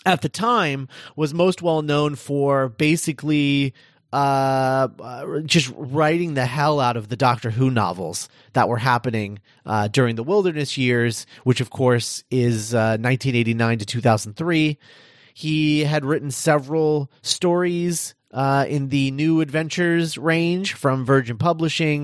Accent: American